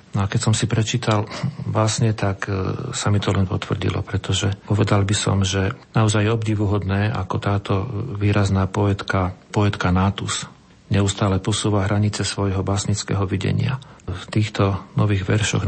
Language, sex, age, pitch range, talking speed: Slovak, male, 40-59, 95-115 Hz, 145 wpm